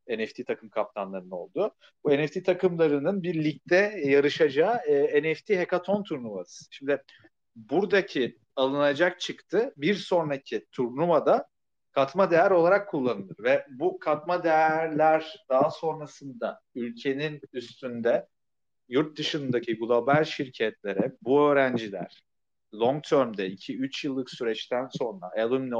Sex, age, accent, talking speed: male, 40-59, native, 105 wpm